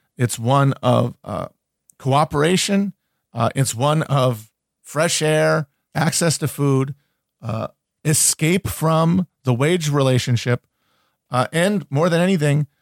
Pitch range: 125-155 Hz